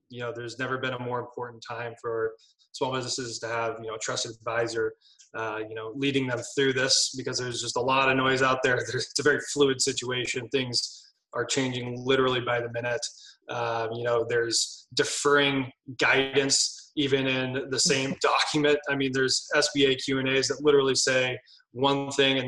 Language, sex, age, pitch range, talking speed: English, male, 20-39, 120-145 Hz, 185 wpm